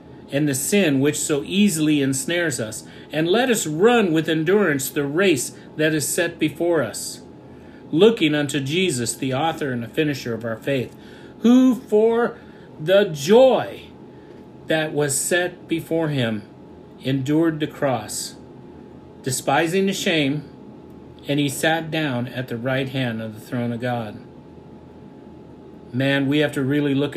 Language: English